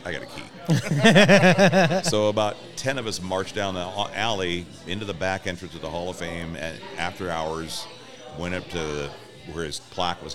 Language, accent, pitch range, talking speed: English, American, 75-95 Hz, 185 wpm